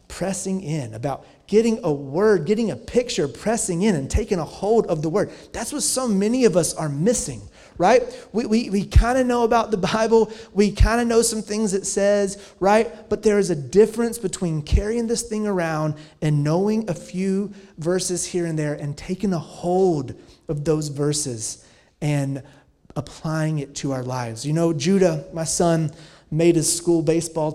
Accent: American